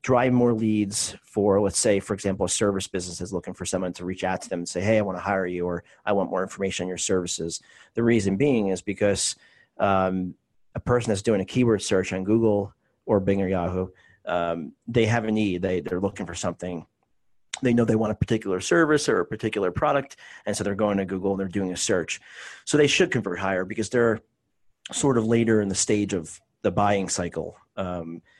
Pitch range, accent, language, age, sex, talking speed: 90-110 Hz, American, English, 40-59, male, 220 wpm